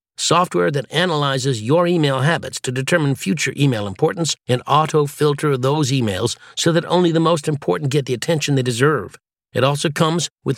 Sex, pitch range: male, 130-165 Hz